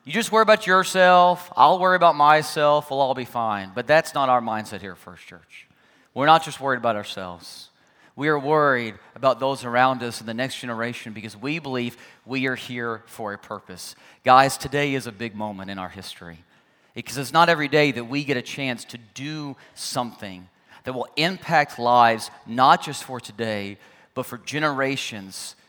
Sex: male